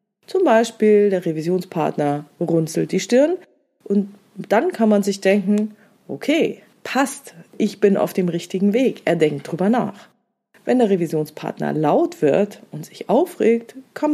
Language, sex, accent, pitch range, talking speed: German, female, German, 160-220 Hz, 145 wpm